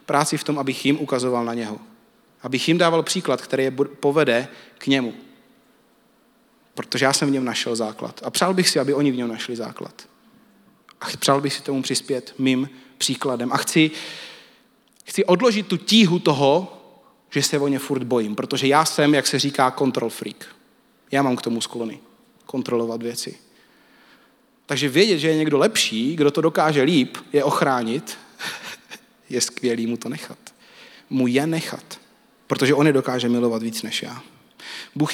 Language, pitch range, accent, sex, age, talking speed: Czech, 120-175 Hz, native, male, 30-49, 170 wpm